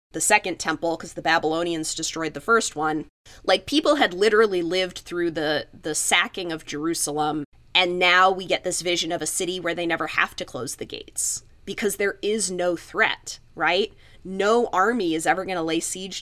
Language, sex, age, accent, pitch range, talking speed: English, female, 20-39, American, 165-220 Hz, 190 wpm